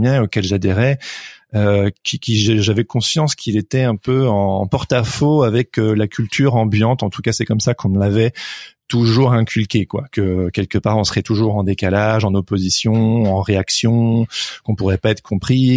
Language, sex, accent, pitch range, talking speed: French, male, French, 110-135 Hz, 185 wpm